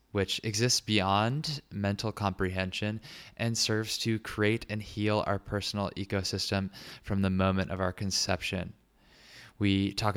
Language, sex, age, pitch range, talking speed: English, male, 20-39, 95-110 Hz, 130 wpm